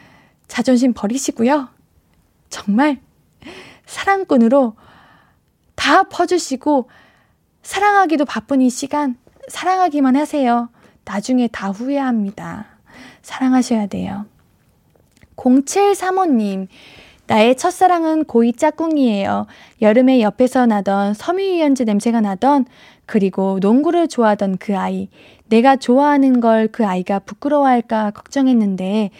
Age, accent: 20-39, native